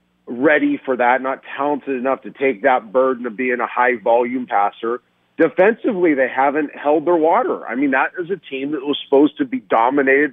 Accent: American